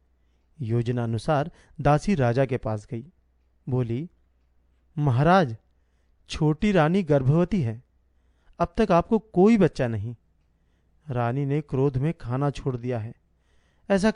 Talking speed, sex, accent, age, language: 120 wpm, male, native, 40-59, Hindi